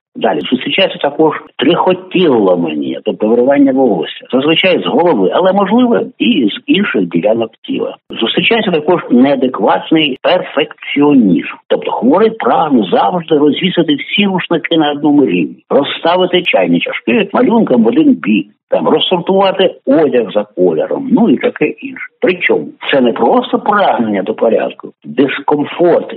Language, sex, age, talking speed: Ukrainian, male, 60-79, 130 wpm